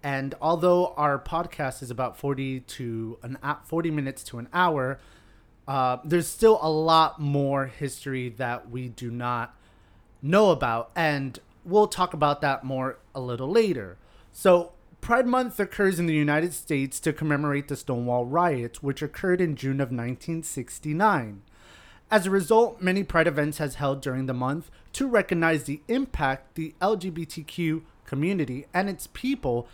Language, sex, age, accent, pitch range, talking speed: English, male, 30-49, American, 130-175 Hz, 155 wpm